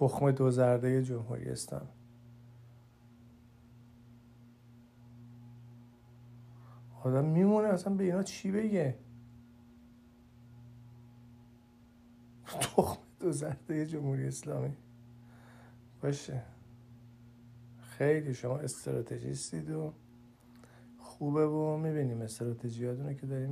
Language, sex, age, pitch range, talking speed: Persian, male, 50-69, 120-140 Hz, 75 wpm